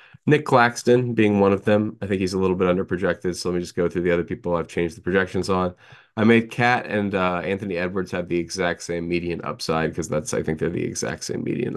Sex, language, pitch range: male, English, 90-110 Hz